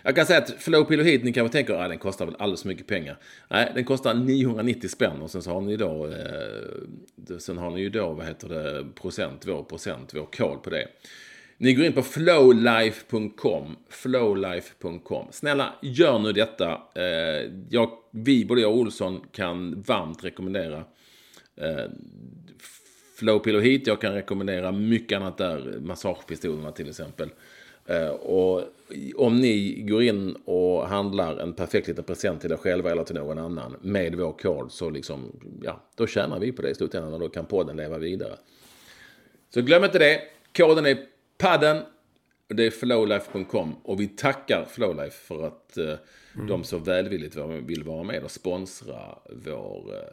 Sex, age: male, 40-59